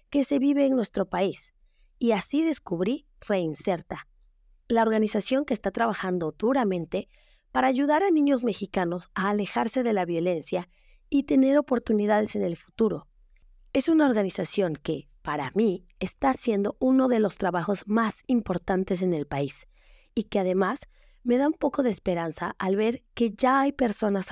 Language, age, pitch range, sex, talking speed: Spanish, 30-49, 185-245 Hz, female, 160 wpm